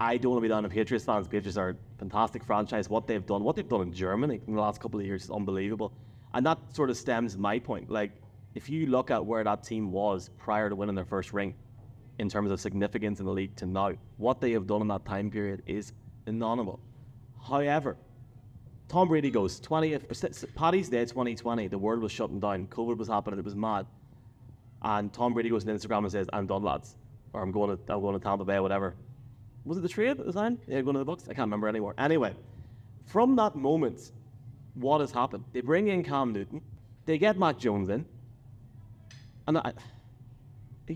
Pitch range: 105-125 Hz